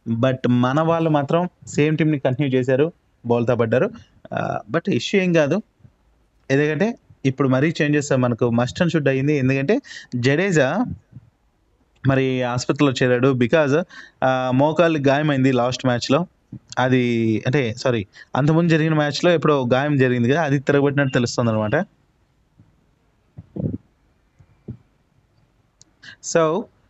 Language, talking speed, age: Telugu, 105 wpm, 20-39